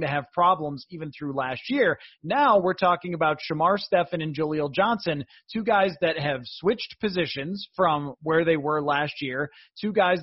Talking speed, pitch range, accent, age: 175 wpm, 155-200 Hz, American, 30-49